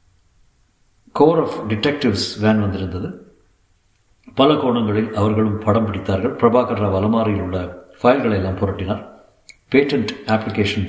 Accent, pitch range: native, 100-120 Hz